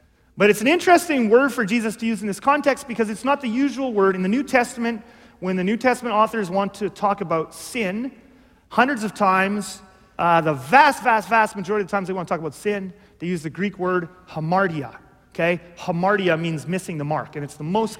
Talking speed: 220 wpm